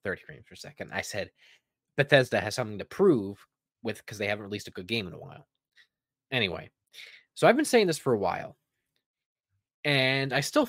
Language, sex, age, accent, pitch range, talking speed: English, male, 20-39, American, 105-150 Hz, 190 wpm